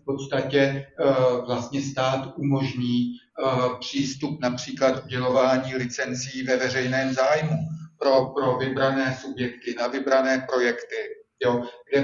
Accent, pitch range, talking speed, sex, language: native, 125-140 Hz, 100 wpm, male, Czech